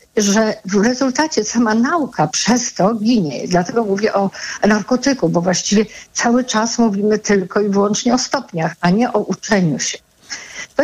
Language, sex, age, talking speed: Polish, female, 50-69, 155 wpm